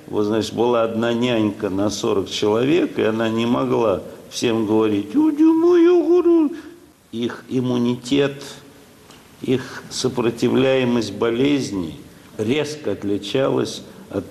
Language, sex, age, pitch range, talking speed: Russian, male, 60-79, 115-140 Hz, 95 wpm